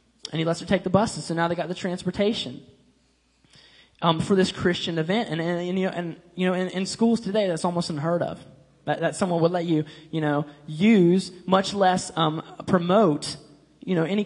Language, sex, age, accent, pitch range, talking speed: English, male, 10-29, American, 165-240 Hz, 210 wpm